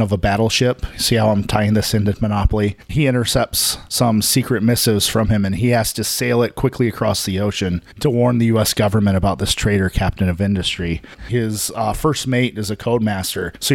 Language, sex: English, male